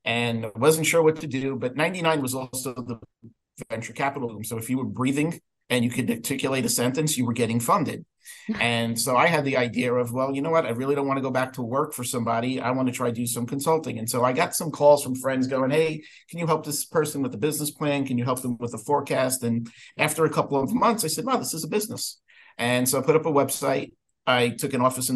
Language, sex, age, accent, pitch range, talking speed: English, male, 50-69, American, 120-140 Hz, 265 wpm